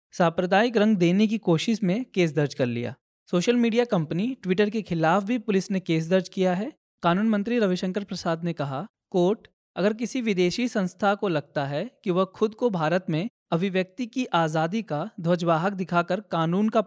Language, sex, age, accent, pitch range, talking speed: Hindi, male, 20-39, native, 160-210 Hz, 180 wpm